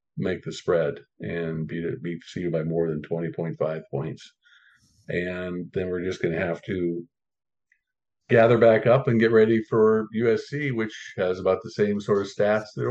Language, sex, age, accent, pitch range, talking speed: English, male, 50-69, American, 90-115 Hz, 175 wpm